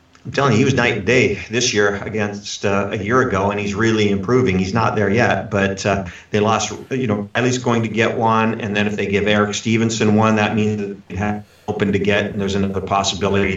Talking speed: 250 wpm